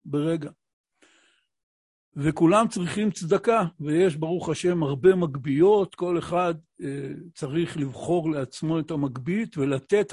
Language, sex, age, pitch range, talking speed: Hebrew, male, 60-79, 145-185 Hz, 105 wpm